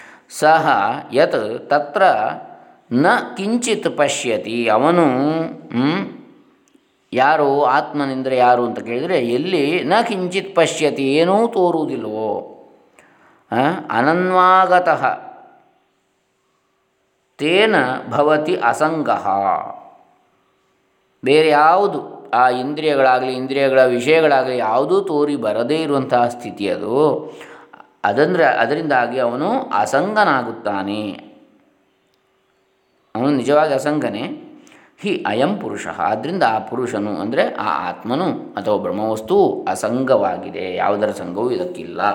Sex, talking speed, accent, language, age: male, 70 wpm, native, Kannada, 20-39